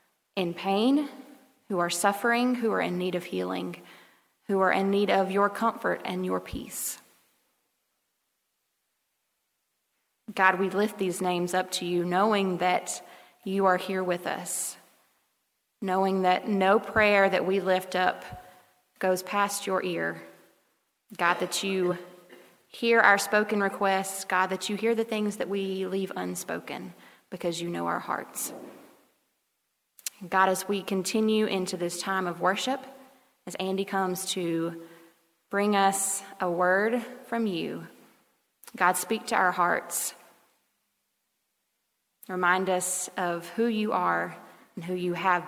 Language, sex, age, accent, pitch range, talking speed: English, female, 30-49, American, 180-205 Hz, 135 wpm